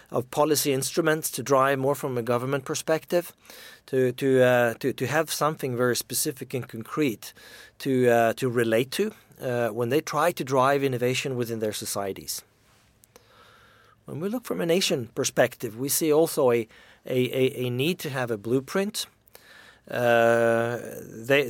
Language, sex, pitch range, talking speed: English, male, 120-145 Hz, 155 wpm